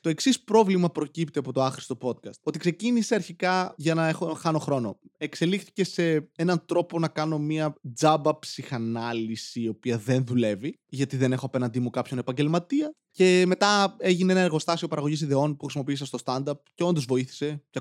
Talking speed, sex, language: 175 wpm, male, Greek